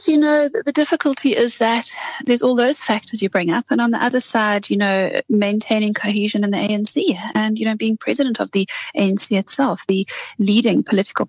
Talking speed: 200 wpm